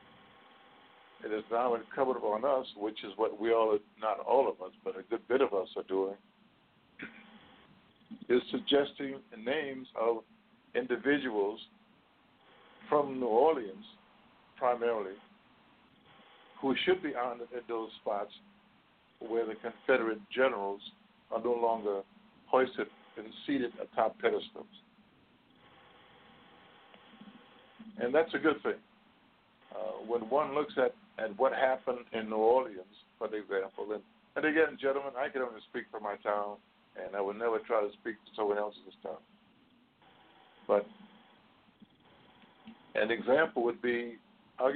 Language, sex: English, male